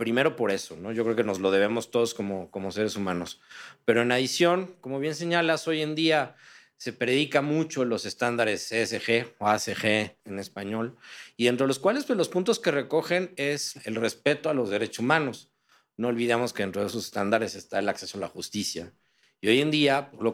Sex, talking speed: male, 205 wpm